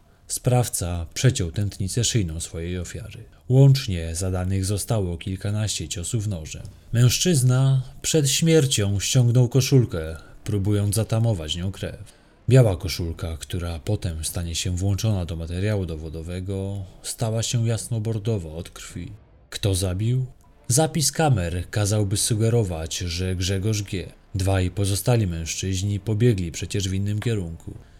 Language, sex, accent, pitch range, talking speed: Polish, male, native, 90-120 Hz, 115 wpm